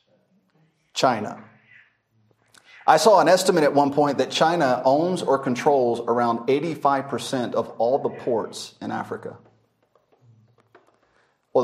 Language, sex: English, male